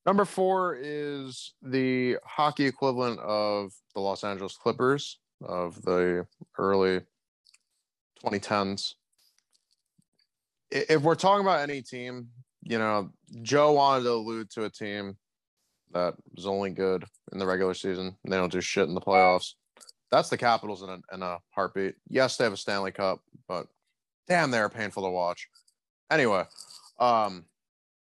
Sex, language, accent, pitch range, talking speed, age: male, English, American, 100-130 Hz, 140 wpm, 30-49